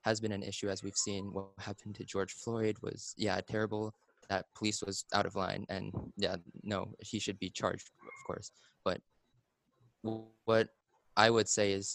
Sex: male